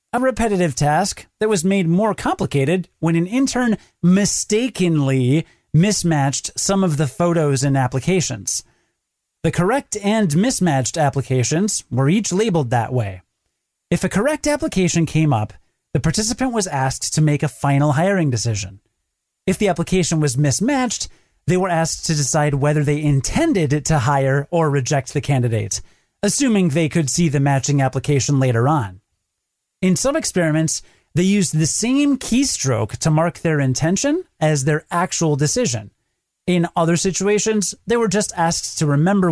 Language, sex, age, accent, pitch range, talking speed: English, male, 30-49, American, 140-205 Hz, 150 wpm